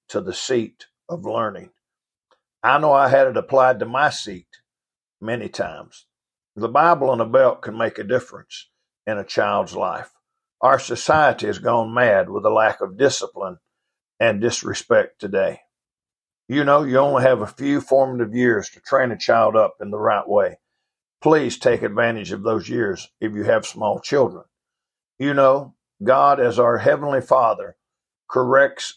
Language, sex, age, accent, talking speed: English, male, 60-79, American, 165 wpm